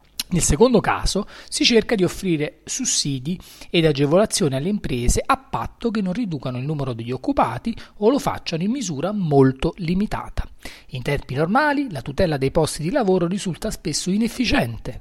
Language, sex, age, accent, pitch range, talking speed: Italian, male, 40-59, native, 135-210 Hz, 160 wpm